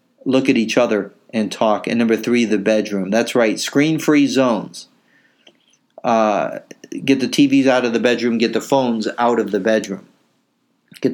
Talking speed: 165 wpm